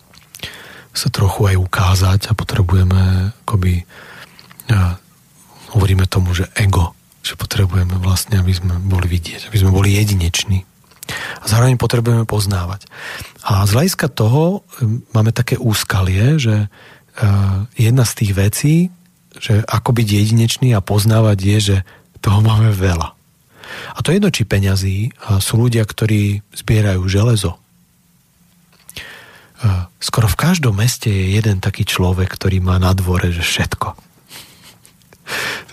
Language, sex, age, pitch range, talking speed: Slovak, male, 40-59, 95-120 Hz, 130 wpm